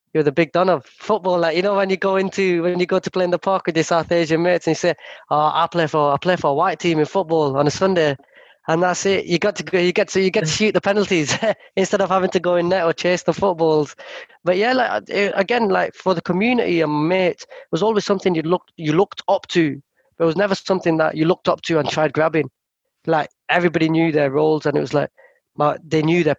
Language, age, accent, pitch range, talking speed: English, 20-39, British, 150-180 Hz, 265 wpm